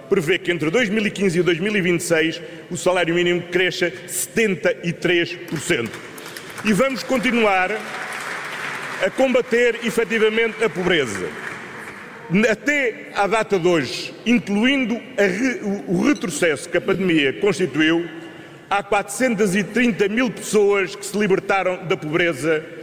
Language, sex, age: Portuguese, male, 40-59